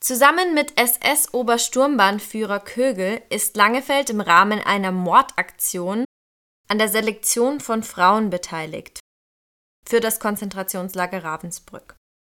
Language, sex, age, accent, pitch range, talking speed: German, female, 20-39, German, 190-245 Hz, 95 wpm